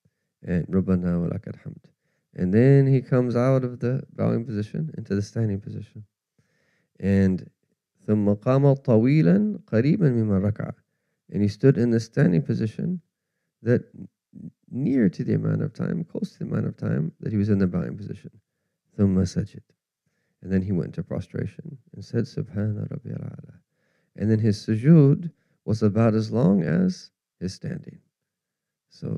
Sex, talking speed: male, 130 wpm